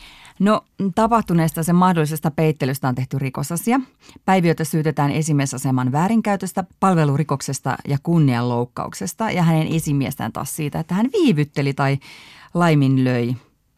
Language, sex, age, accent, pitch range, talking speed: Finnish, female, 30-49, native, 140-170 Hz, 110 wpm